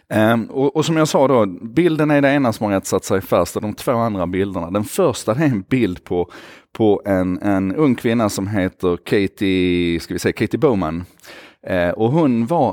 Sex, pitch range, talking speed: male, 90-115 Hz, 210 wpm